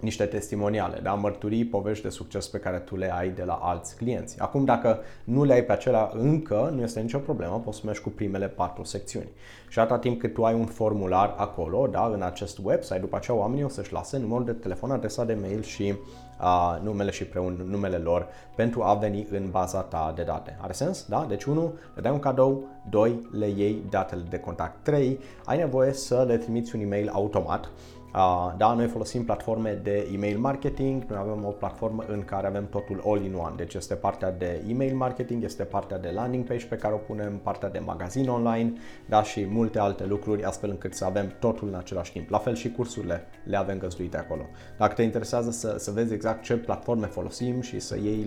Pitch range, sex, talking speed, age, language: 95-120 Hz, male, 210 wpm, 20-39, Romanian